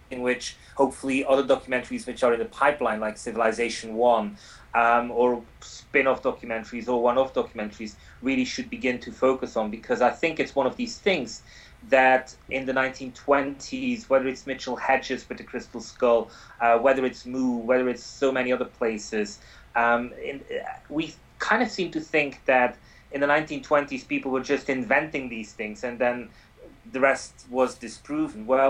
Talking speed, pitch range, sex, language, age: 170 wpm, 115-135 Hz, male, English, 30-49